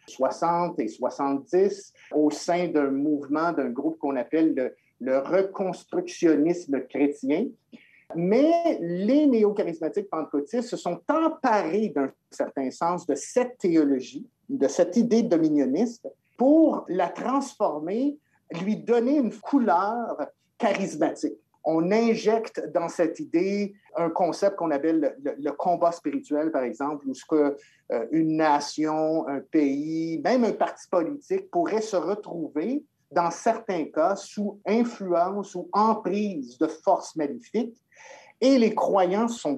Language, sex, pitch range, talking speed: French, male, 155-230 Hz, 130 wpm